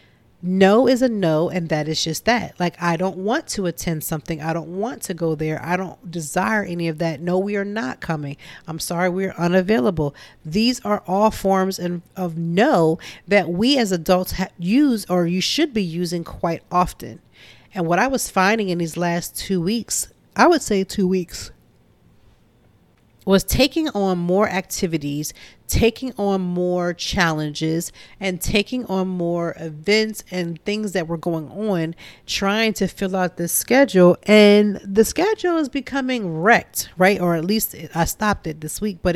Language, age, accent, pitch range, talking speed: English, 40-59, American, 165-205 Hz, 175 wpm